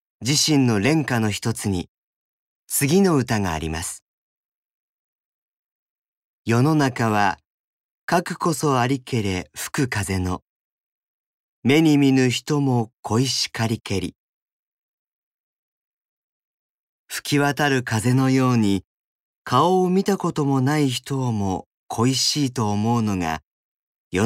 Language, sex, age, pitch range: Japanese, male, 40-59, 105-140 Hz